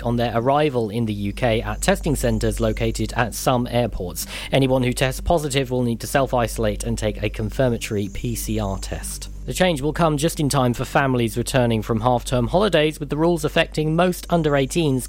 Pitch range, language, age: 115-165 Hz, English, 40-59